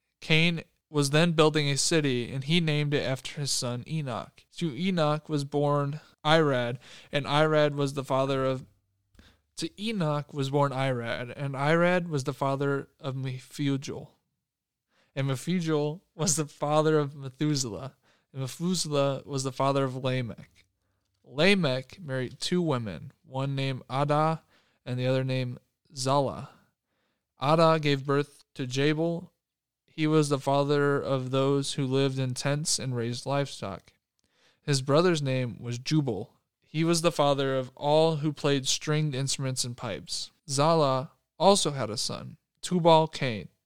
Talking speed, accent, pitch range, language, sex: 140 wpm, American, 130-155 Hz, English, male